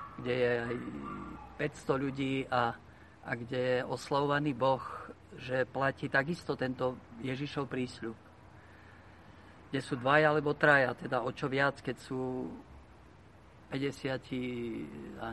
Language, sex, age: Slovak, male, 50-69